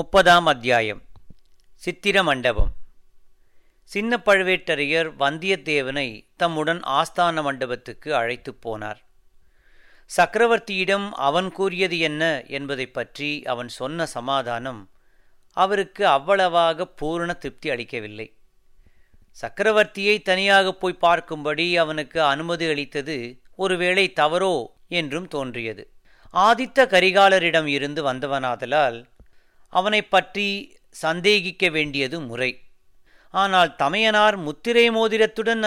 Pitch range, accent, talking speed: 140-205 Hz, native, 80 wpm